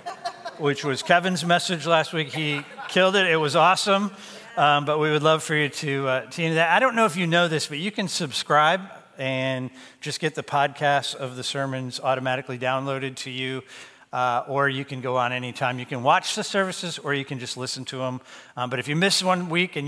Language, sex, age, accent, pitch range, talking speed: English, male, 50-69, American, 135-175 Hz, 225 wpm